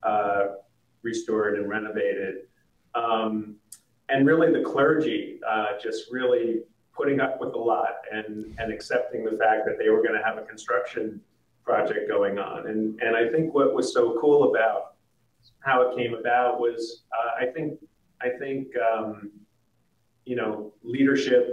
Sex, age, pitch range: male, 40-59, 110-135 Hz